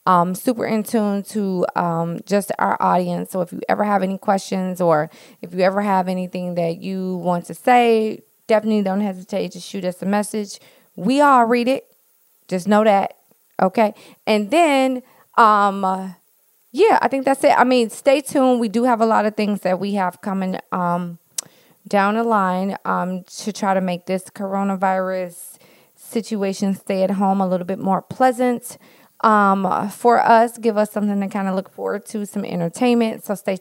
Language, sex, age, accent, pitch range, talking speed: English, female, 20-39, American, 185-235 Hz, 180 wpm